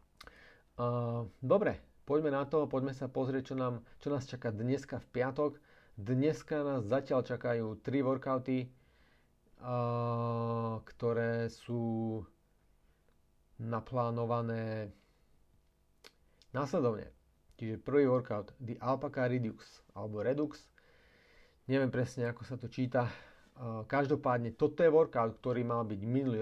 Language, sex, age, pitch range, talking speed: Slovak, male, 40-59, 110-130 Hz, 115 wpm